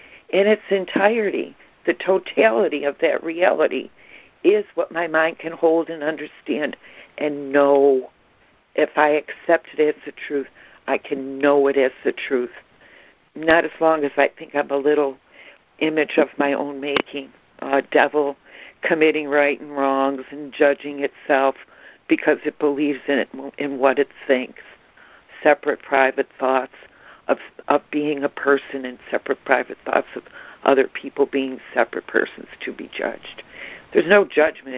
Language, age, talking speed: English, 60-79, 150 wpm